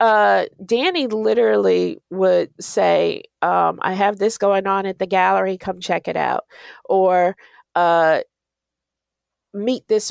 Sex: female